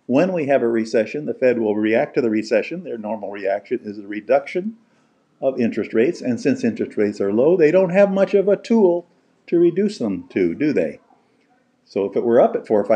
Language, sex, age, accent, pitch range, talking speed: English, male, 50-69, American, 110-180 Hz, 220 wpm